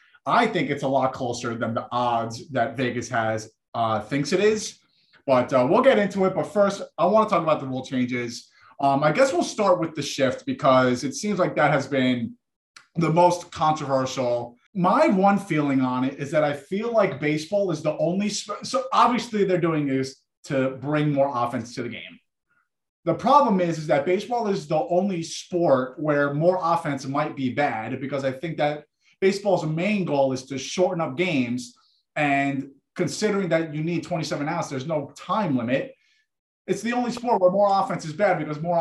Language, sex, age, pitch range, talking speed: English, male, 30-49, 130-185 Hz, 195 wpm